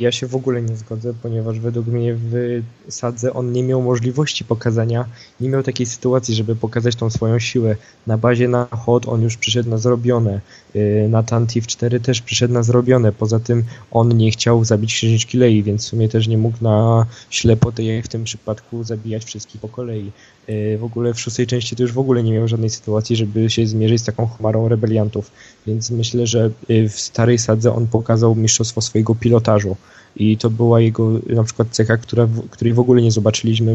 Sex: male